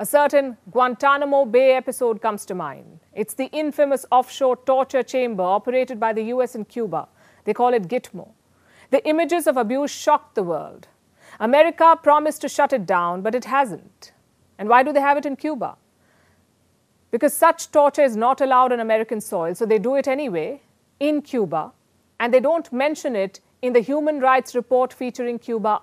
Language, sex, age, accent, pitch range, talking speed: English, female, 50-69, Indian, 235-285 Hz, 175 wpm